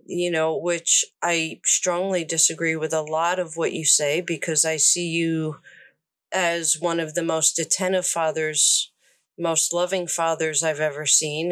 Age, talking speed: 40-59, 155 wpm